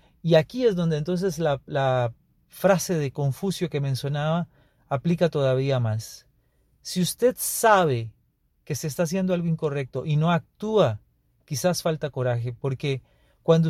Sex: male